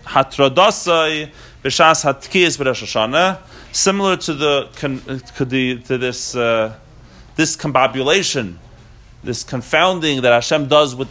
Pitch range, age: 120-150 Hz, 30-49